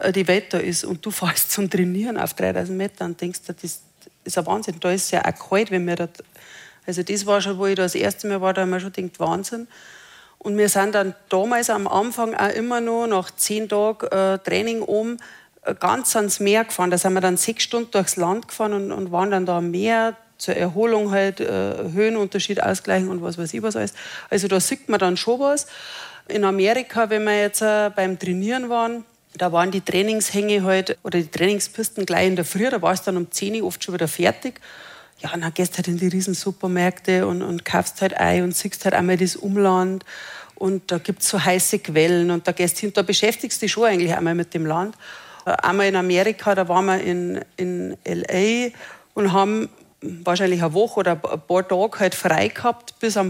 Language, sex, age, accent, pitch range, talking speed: German, female, 40-59, German, 180-215 Hz, 215 wpm